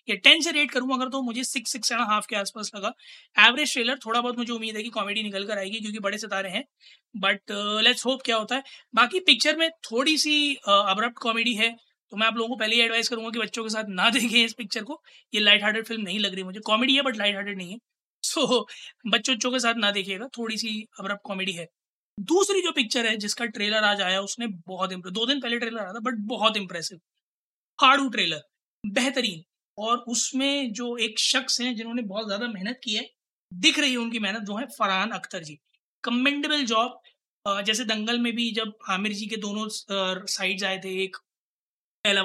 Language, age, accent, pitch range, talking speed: Hindi, 20-39, native, 195-235 Hz, 190 wpm